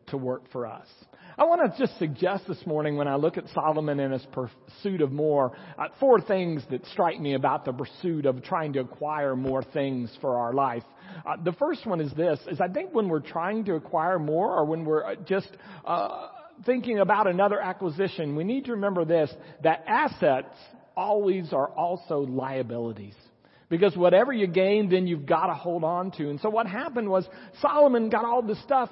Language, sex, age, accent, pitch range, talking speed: English, male, 50-69, American, 160-225 Hz, 190 wpm